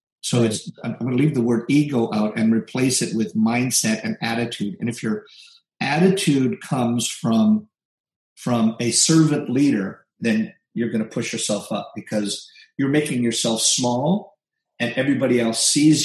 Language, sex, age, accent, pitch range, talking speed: English, male, 50-69, American, 115-165 Hz, 155 wpm